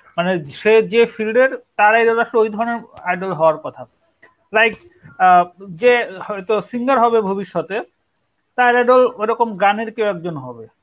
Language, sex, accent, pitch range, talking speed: Bengali, male, native, 185-230 Hz, 85 wpm